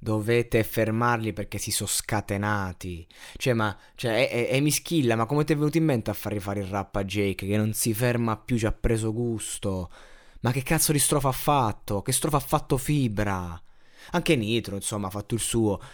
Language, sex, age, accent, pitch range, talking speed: Italian, male, 20-39, native, 110-130 Hz, 205 wpm